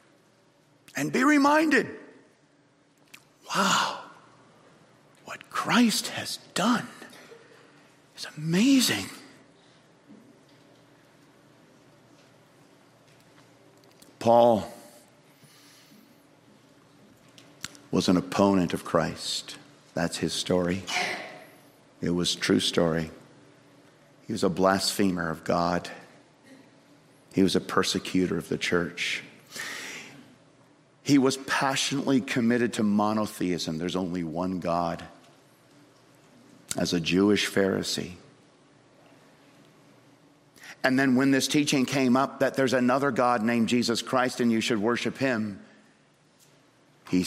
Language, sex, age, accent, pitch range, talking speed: English, male, 50-69, American, 95-145 Hz, 90 wpm